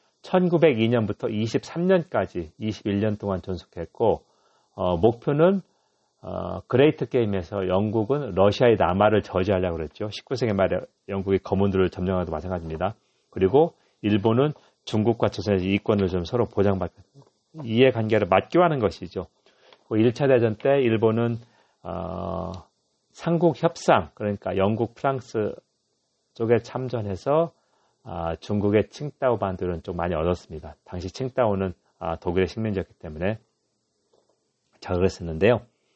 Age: 40-59